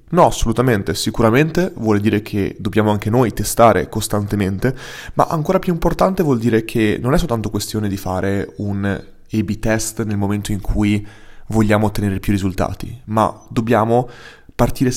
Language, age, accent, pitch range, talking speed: Italian, 20-39, native, 100-120 Hz, 150 wpm